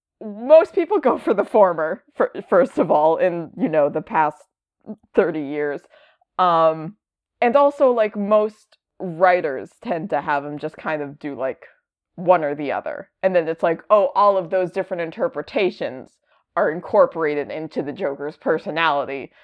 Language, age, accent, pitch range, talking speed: English, 20-39, American, 165-240 Hz, 155 wpm